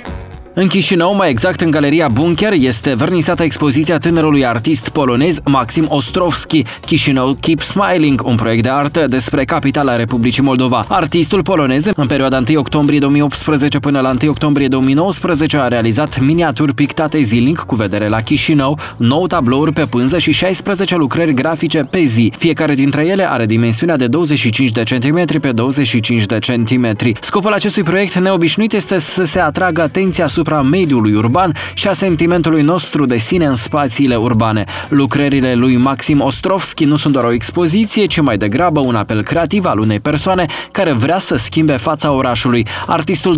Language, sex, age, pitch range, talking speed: Romanian, male, 20-39, 125-165 Hz, 160 wpm